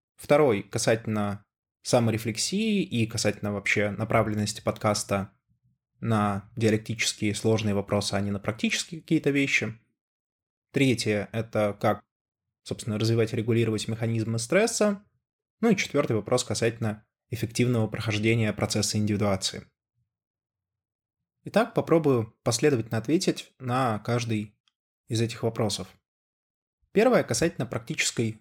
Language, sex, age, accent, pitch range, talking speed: Russian, male, 20-39, native, 110-135 Hz, 100 wpm